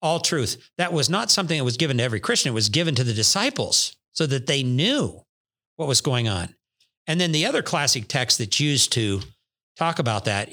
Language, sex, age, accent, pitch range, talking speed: English, male, 50-69, American, 115-145 Hz, 215 wpm